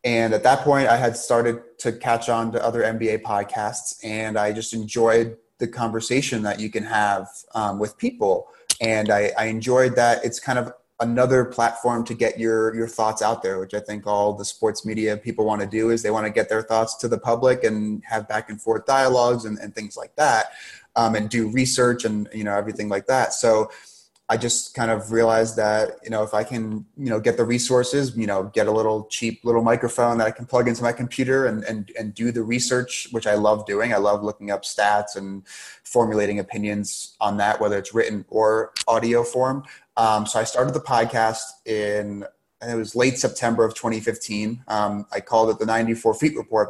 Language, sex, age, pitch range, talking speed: English, male, 30-49, 105-120 Hz, 215 wpm